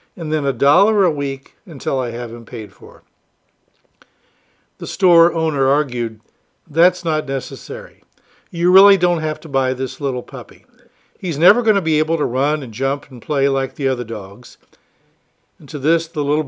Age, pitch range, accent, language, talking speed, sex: 60-79, 130-165 Hz, American, English, 180 wpm, male